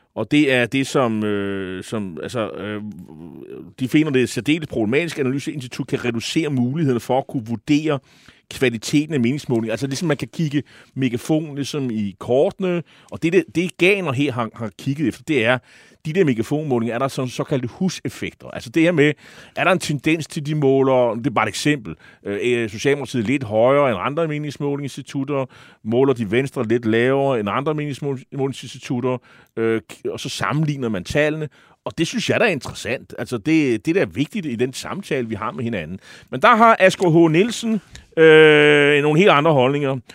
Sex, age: male, 30-49